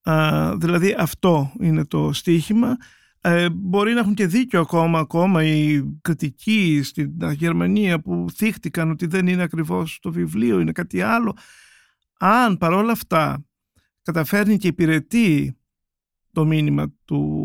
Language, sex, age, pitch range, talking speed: Greek, male, 50-69, 155-205 Hz, 130 wpm